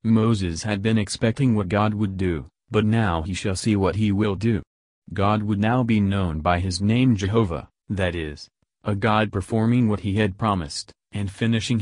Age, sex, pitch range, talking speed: 30-49, male, 95-110 Hz, 190 wpm